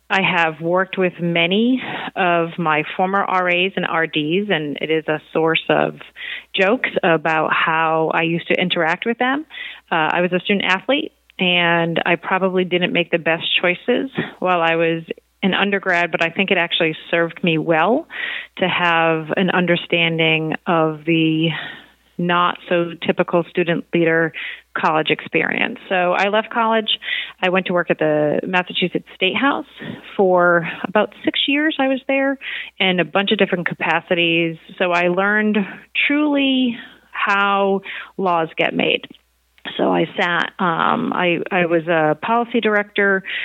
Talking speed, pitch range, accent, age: 150 wpm, 165-200 Hz, American, 30-49